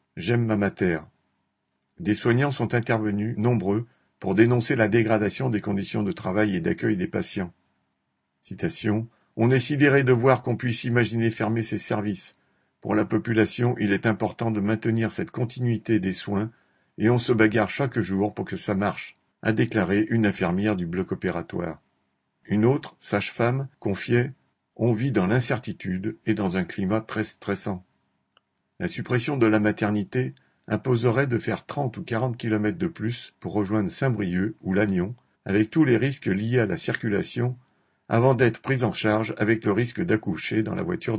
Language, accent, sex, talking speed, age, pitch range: French, French, male, 165 wpm, 50-69, 100-120 Hz